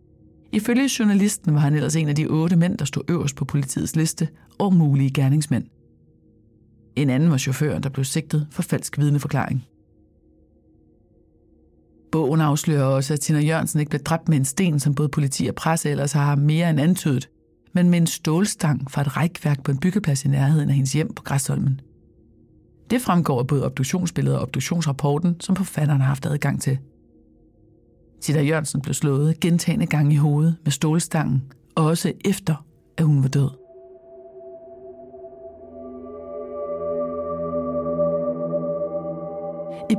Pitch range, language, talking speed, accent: 135-175 Hz, English, 150 wpm, Danish